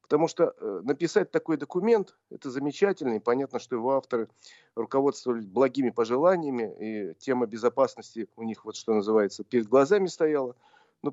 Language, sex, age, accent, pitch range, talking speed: Russian, male, 40-59, native, 115-150 Hz, 140 wpm